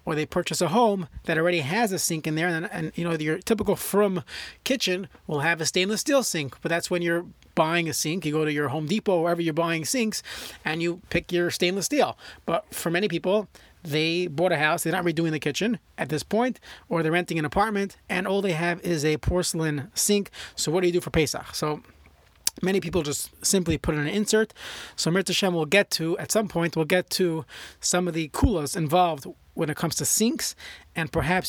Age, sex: 30-49, male